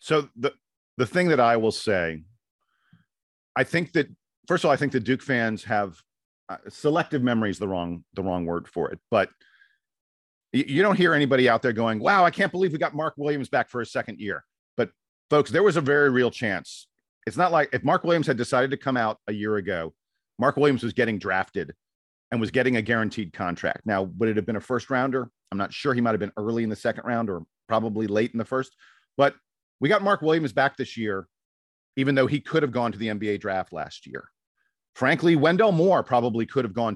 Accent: American